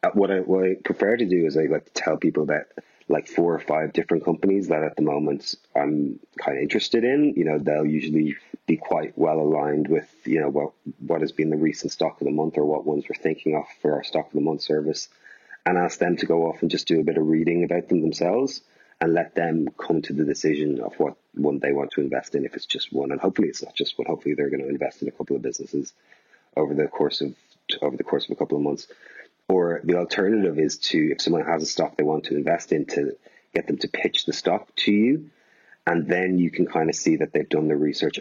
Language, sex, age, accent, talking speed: English, male, 30-49, Irish, 255 wpm